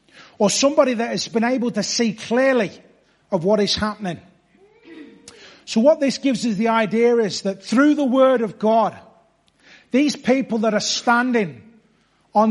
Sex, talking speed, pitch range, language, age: male, 160 wpm, 205-245 Hz, English, 30-49